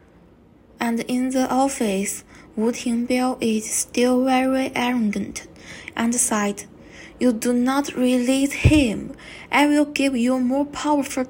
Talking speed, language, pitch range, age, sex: 120 wpm, Malay, 230-260 Hz, 20-39, female